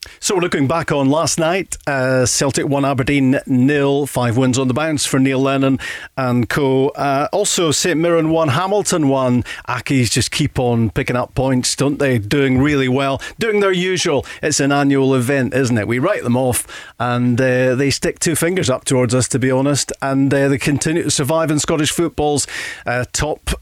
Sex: male